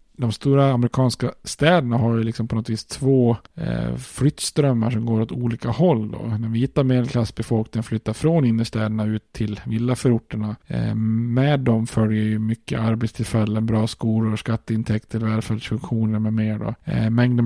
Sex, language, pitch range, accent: male, Swedish, 110-120 Hz, Norwegian